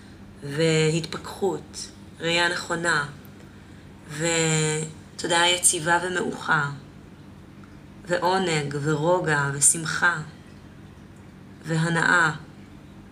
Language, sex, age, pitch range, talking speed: Hebrew, female, 30-49, 155-180 Hz, 45 wpm